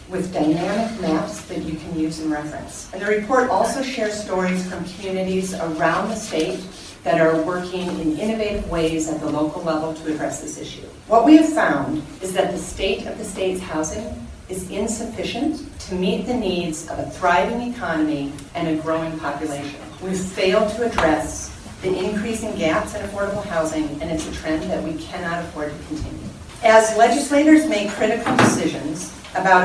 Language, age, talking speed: English, 40-59, 175 wpm